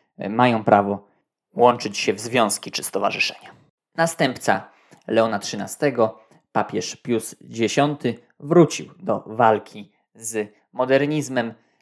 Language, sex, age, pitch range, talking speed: Polish, male, 20-39, 105-135 Hz, 95 wpm